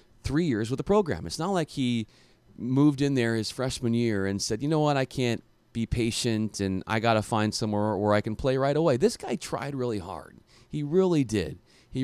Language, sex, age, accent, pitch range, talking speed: English, male, 30-49, American, 110-140 Hz, 225 wpm